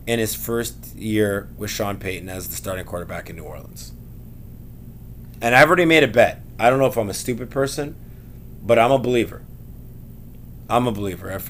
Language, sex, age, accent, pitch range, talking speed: English, male, 20-39, American, 105-115 Hz, 190 wpm